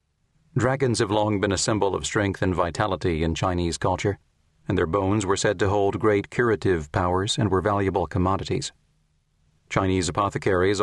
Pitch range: 90-105 Hz